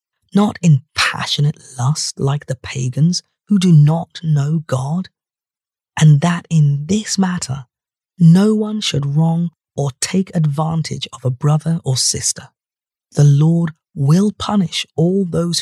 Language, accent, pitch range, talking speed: English, British, 140-175 Hz, 135 wpm